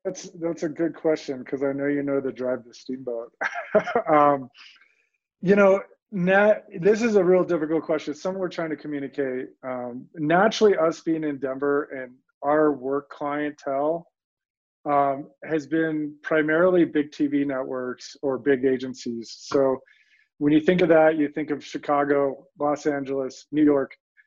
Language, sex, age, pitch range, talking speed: English, male, 30-49, 135-165 Hz, 155 wpm